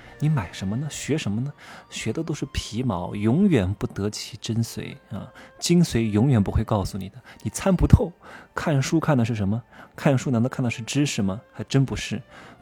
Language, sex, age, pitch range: Chinese, male, 20-39, 105-140 Hz